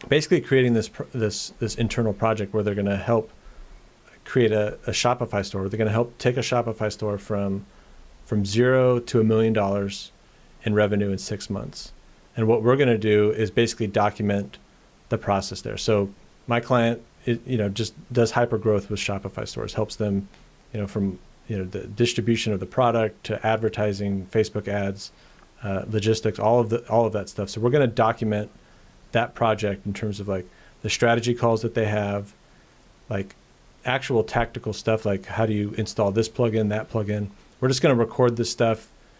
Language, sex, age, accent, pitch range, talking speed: English, male, 40-59, American, 100-115 Hz, 190 wpm